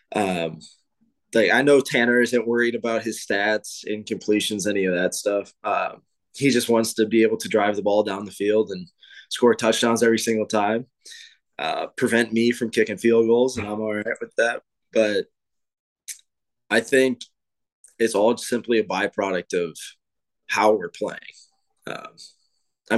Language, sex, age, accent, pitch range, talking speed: English, male, 20-39, American, 105-120 Hz, 160 wpm